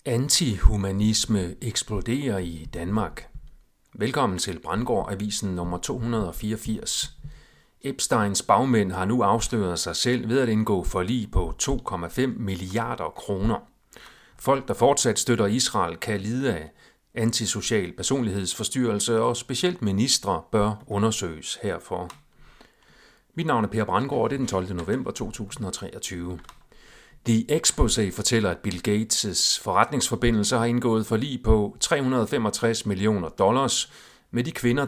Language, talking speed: Danish, 120 wpm